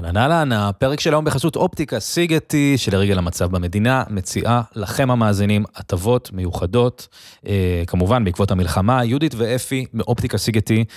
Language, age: Hebrew, 20-39